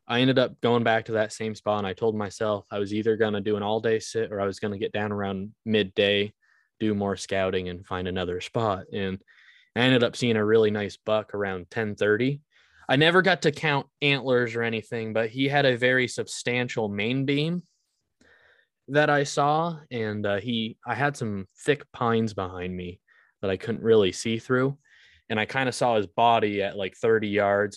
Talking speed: 205 wpm